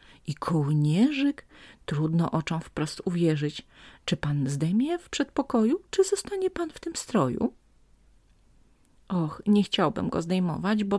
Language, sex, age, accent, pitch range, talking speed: Polish, female, 30-49, native, 145-215 Hz, 125 wpm